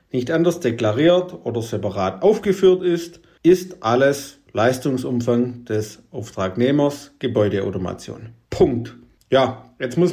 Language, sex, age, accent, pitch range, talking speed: German, male, 50-69, German, 120-165 Hz, 100 wpm